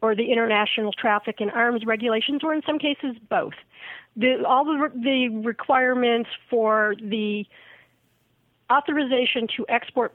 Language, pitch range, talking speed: English, 210-245 Hz, 125 wpm